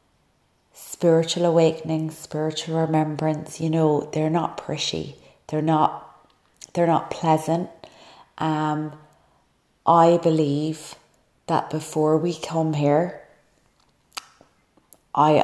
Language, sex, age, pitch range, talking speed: English, female, 30-49, 150-160 Hz, 90 wpm